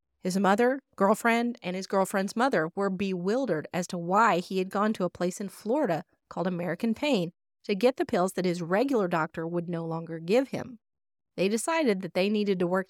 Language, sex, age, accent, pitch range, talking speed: English, female, 30-49, American, 175-220 Hz, 200 wpm